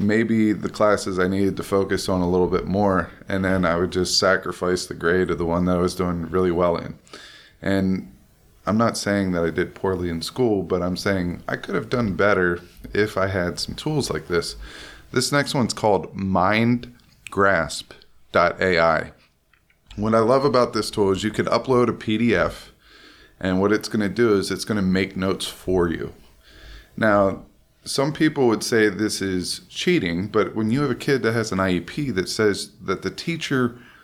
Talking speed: 190 wpm